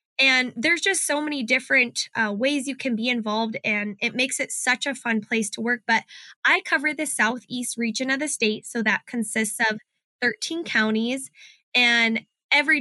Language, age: English, 10-29